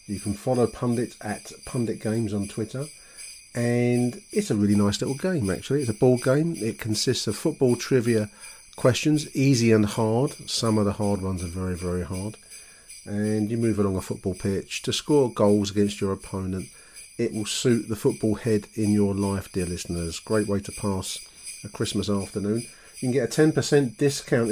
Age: 40-59